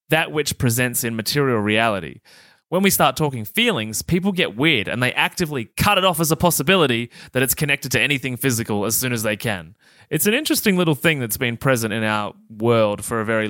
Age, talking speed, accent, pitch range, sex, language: 20-39, 215 wpm, Australian, 110-150 Hz, male, English